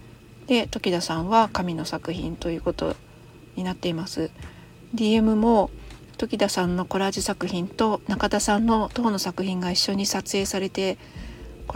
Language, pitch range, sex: Japanese, 180-225 Hz, female